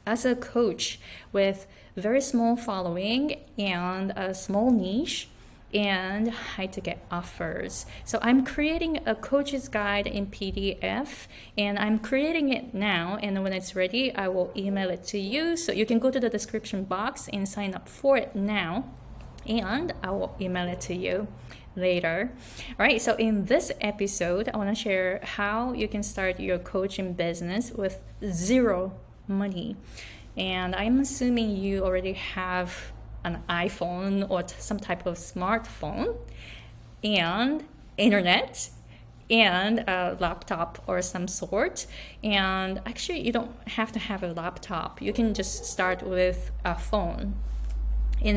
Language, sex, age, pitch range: Japanese, female, 20-39, 180-225 Hz